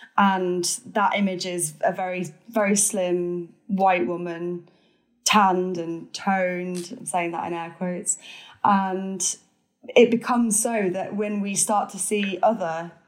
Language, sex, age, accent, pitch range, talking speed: English, female, 10-29, British, 185-230 Hz, 140 wpm